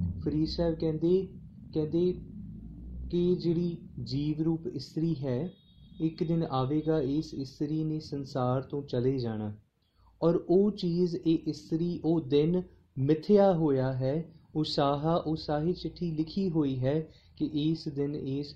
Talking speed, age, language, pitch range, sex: 125 wpm, 30-49, Punjabi, 135-170 Hz, male